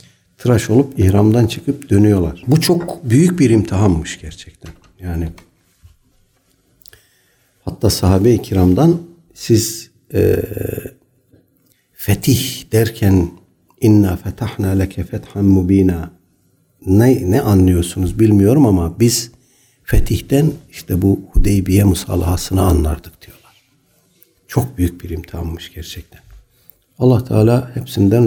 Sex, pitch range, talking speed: male, 95-130 Hz, 95 wpm